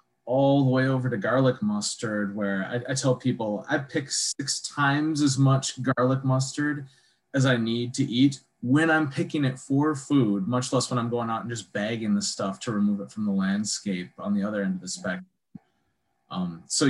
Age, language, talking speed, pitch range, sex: 20-39, English, 200 wpm, 105-145 Hz, male